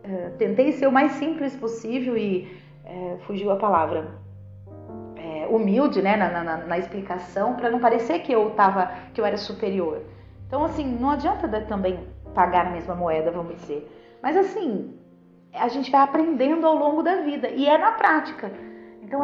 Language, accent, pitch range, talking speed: Portuguese, Brazilian, 190-275 Hz, 155 wpm